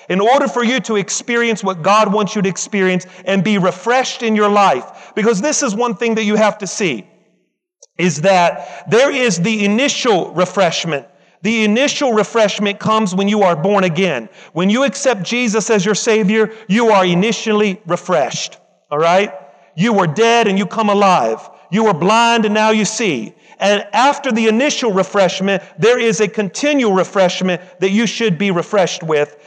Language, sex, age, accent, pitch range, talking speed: English, male, 40-59, American, 185-225 Hz, 175 wpm